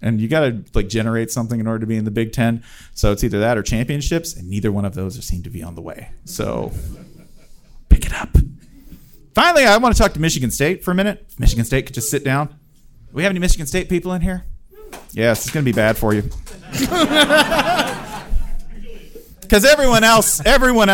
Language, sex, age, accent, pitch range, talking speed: English, male, 40-59, American, 115-180 Hz, 205 wpm